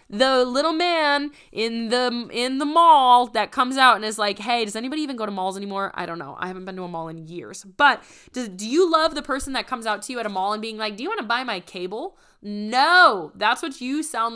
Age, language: 20-39, English